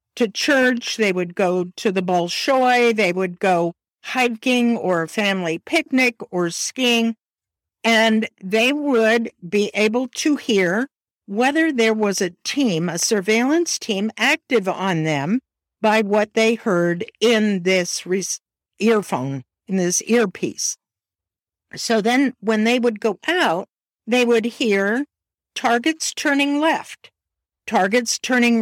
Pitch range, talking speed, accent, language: 190-245 Hz, 125 wpm, American, English